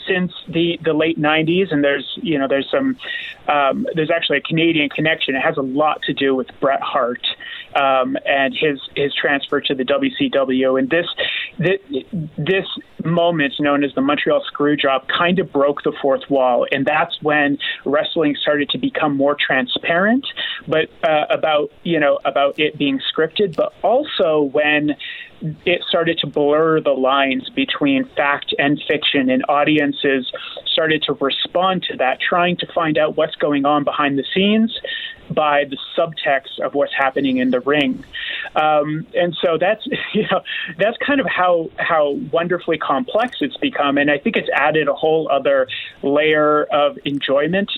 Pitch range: 145-175 Hz